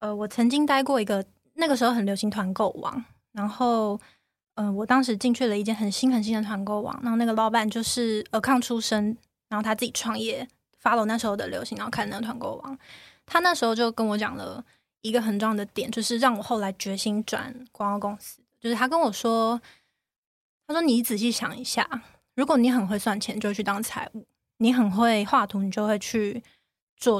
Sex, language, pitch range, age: female, Chinese, 210-250 Hz, 20-39